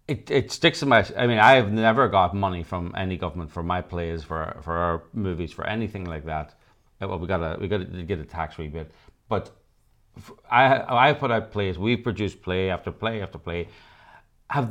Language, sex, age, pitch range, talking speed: English, male, 40-59, 85-115 Hz, 205 wpm